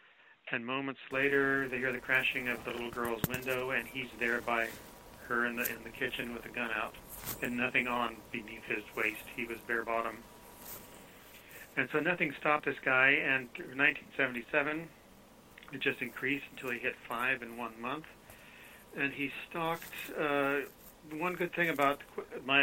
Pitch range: 120-135 Hz